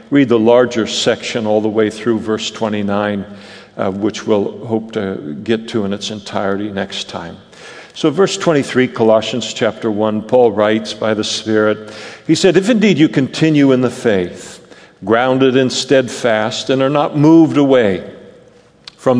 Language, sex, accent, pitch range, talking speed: English, male, American, 110-140 Hz, 160 wpm